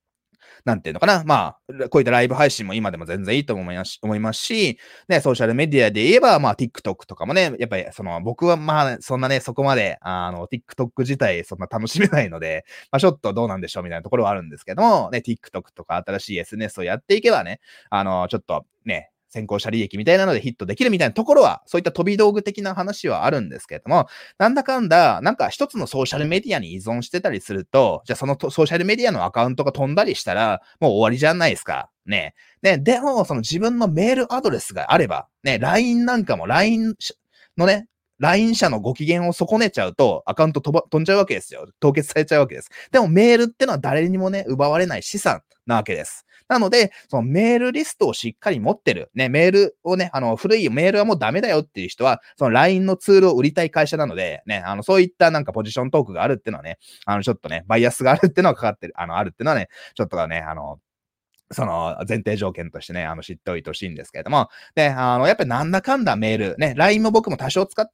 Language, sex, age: Japanese, male, 20-39